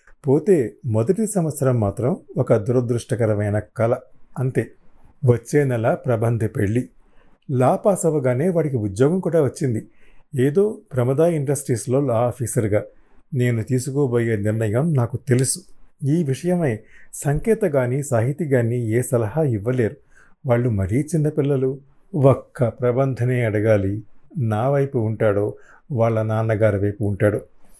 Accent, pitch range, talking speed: native, 115-155 Hz, 110 wpm